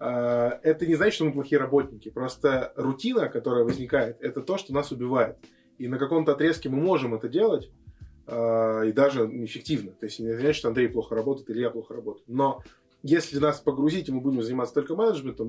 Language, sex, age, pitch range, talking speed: Russian, male, 20-39, 115-150 Hz, 190 wpm